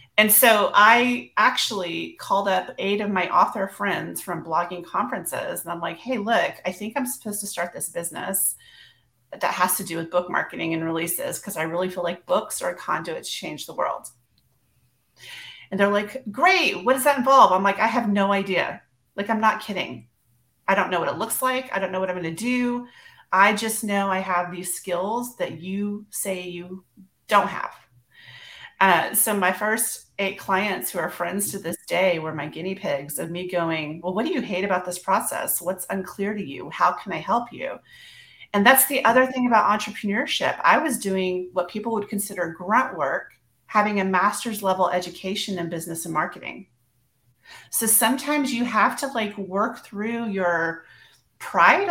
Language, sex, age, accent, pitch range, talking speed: English, female, 30-49, American, 180-225 Hz, 190 wpm